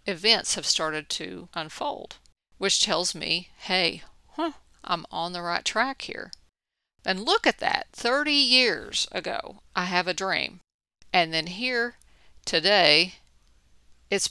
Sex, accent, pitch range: female, American, 175-225 Hz